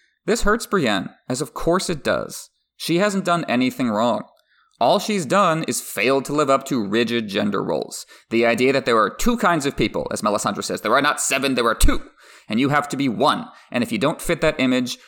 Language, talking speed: English, 225 wpm